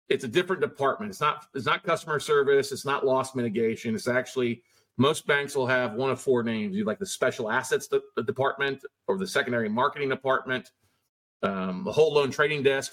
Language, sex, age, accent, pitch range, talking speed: English, male, 40-59, American, 125-200 Hz, 200 wpm